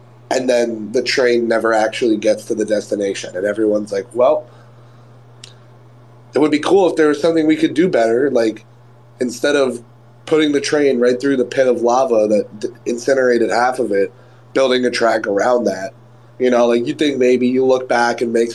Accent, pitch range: American, 120-135 Hz